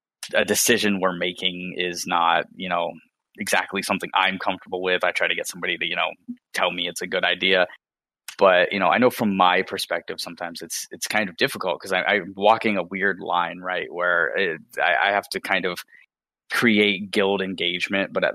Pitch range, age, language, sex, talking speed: 90-100 Hz, 20-39, English, male, 195 wpm